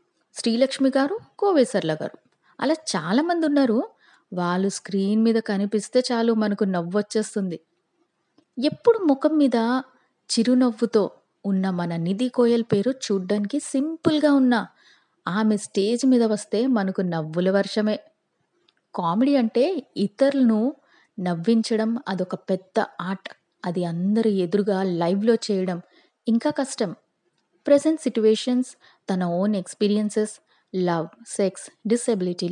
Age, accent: 20-39, native